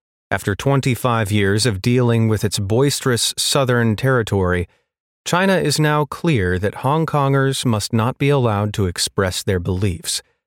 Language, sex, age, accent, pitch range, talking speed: English, male, 30-49, American, 105-140 Hz, 145 wpm